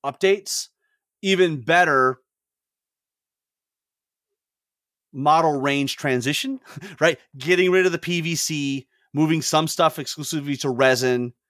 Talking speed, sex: 95 wpm, male